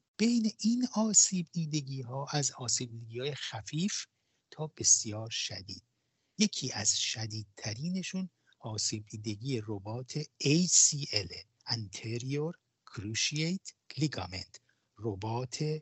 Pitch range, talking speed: 105-145 Hz, 90 wpm